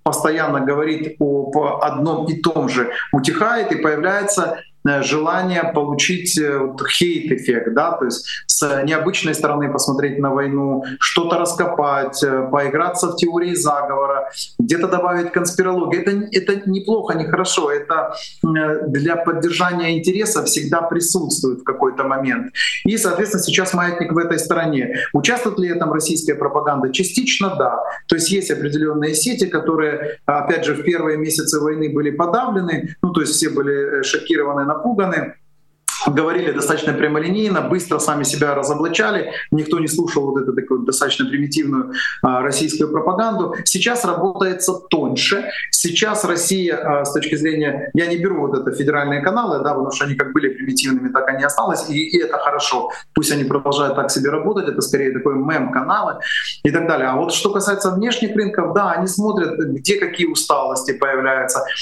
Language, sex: Russian, male